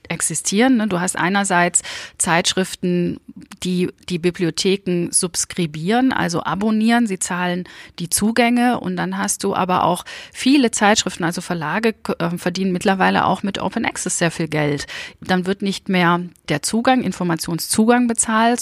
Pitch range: 170-200 Hz